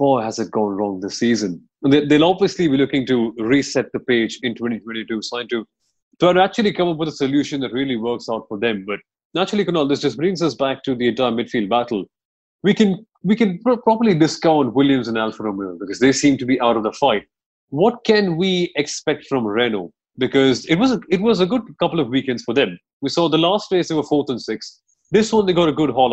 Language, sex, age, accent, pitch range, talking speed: English, male, 30-49, Indian, 125-175 Hz, 230 wpm